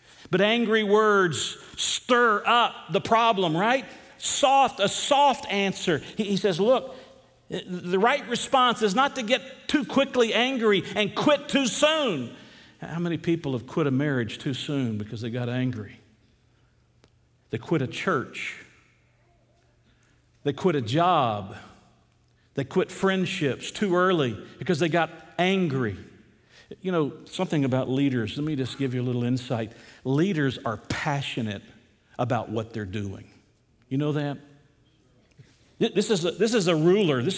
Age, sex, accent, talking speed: 50-69, male, American, 145 wpm